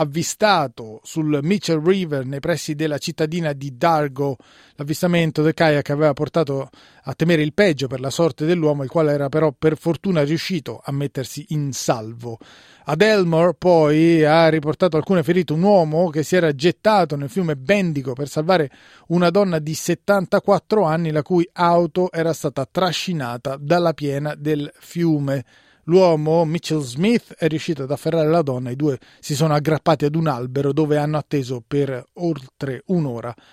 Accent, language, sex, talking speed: native, Italian, male, 160 wpm